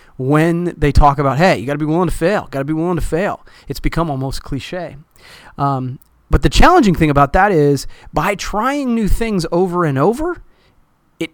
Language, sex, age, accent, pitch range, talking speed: English, male, 30-49, American, 140-200 Hz, 200 wpm